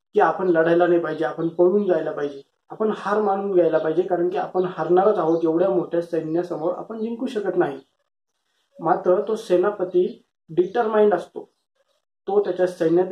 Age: 20-39